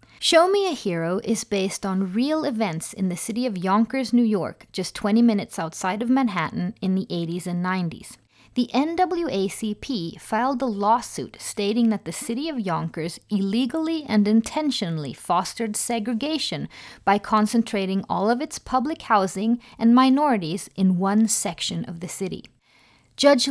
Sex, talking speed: female, 150 wpm